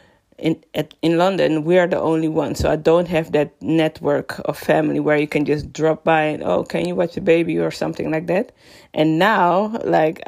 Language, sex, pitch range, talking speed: English, female, 155-200 Hz, 215 wpm